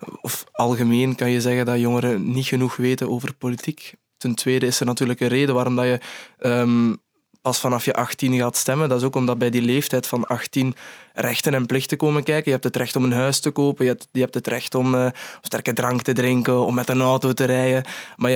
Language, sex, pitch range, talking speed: Dutch, male, 125-140 Hz, 235 wpm